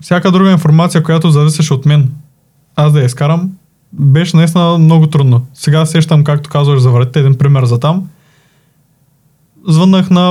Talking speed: 155 wpm